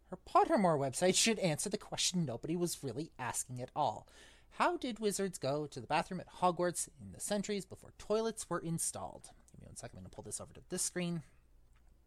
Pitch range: 135-215 Hz